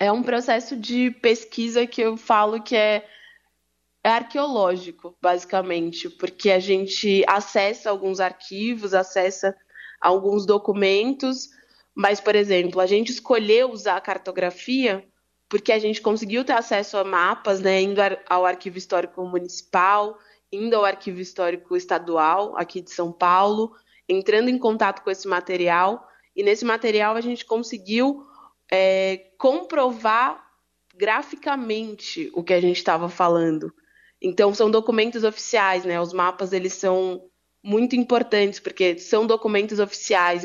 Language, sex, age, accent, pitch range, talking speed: Portuguese, female, 20-39, Brazilian, 180-225 Hz, 130 wpm